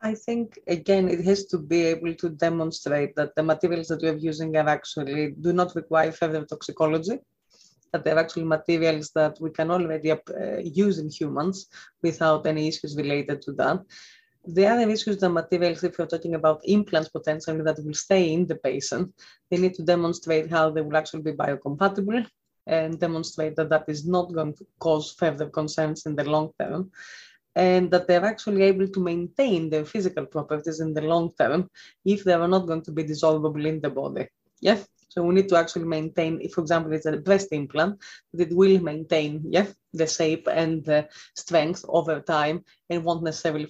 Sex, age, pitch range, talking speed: female, 30-49, 155-190 Hz, 185 wpm